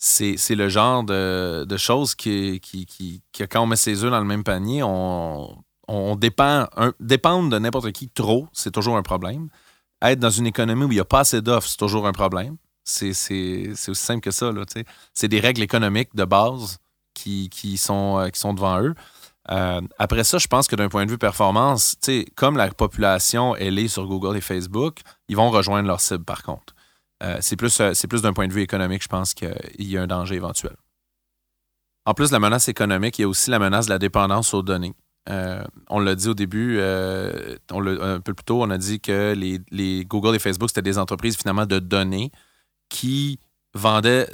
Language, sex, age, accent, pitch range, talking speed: French, male, 30-49, Canadian, 95-115 Hz, 215 wpm